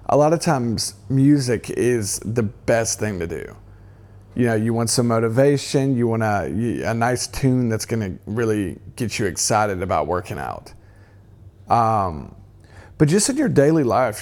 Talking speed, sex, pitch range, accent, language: 170 wpm, male, 100-125 Hz, American, English